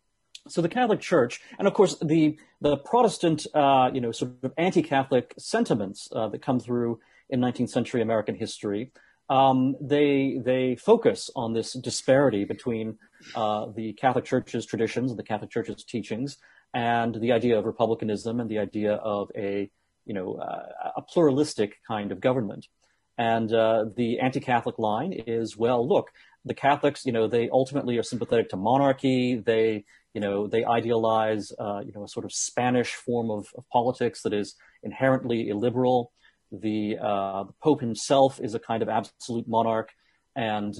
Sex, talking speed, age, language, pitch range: male, 165 wpm, 40-59, English, 110-130 Hz